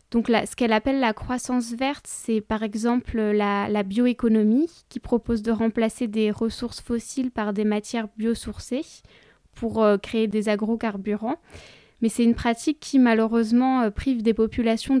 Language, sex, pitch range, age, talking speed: French, female, 210-235 Hz, 20-39, 155 wpm